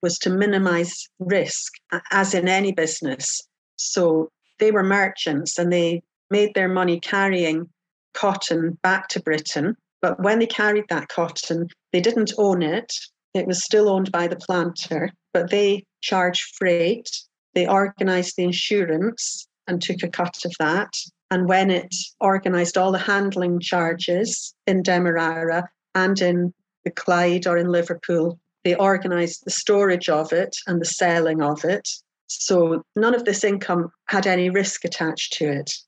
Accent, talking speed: British, 155 wpm